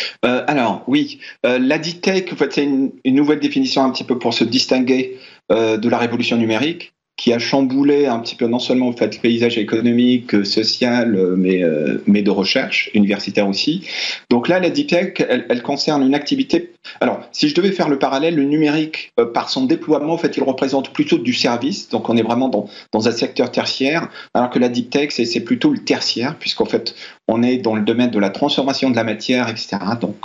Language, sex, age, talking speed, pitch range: French, male, 40-59, 210 wpm, 110-140 Hz